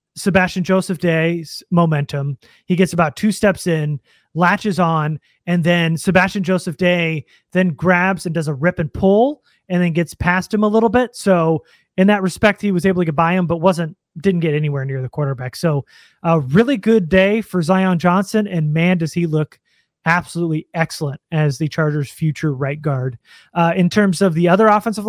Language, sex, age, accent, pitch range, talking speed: English, male, 30-49, American, 160-195 Hz, 190 wpm